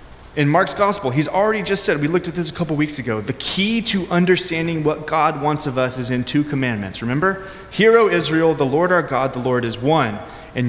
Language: English